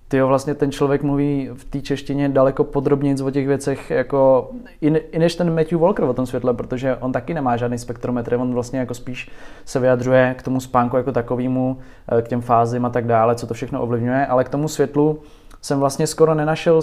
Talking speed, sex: 200 wpm, male